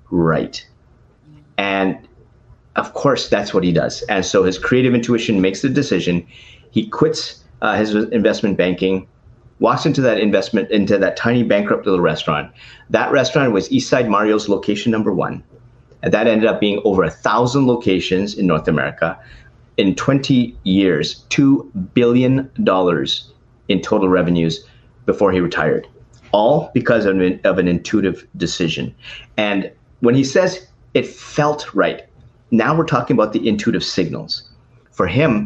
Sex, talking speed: male, 150 wpm